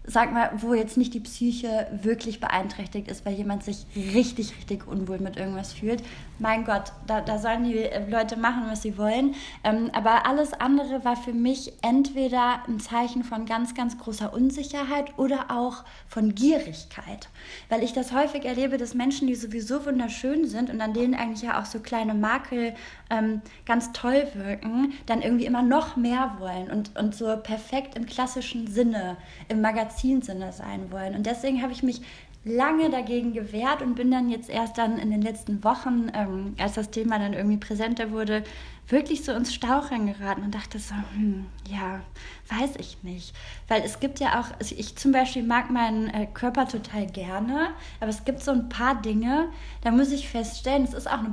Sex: female